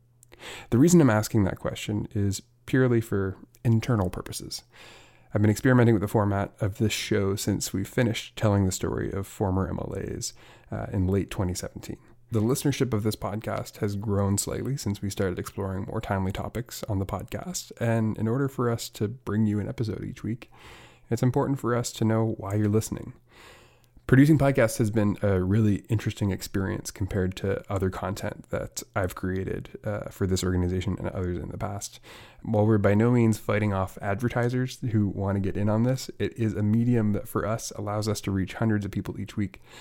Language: English